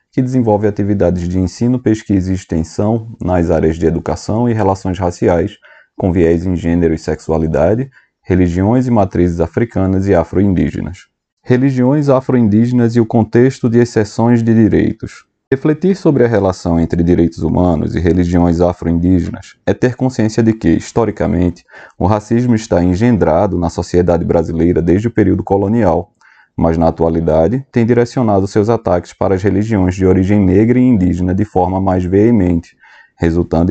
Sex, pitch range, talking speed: male, 85-110 Hz, 150 wpm